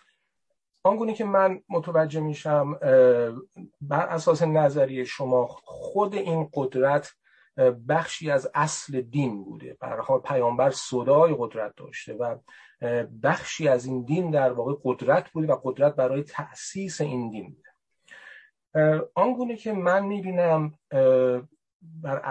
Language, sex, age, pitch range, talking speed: Persian, male, 40-59, 130-175 Hz, 115 wpm